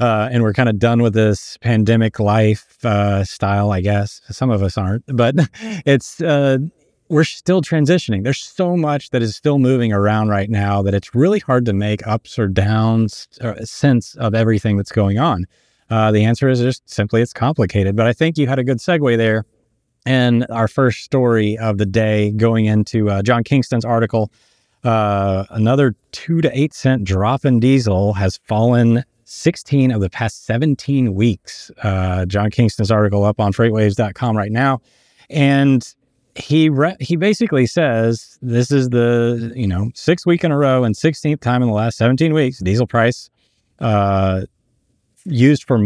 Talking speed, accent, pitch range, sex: 175 wpm, American, 105-130 Hz, male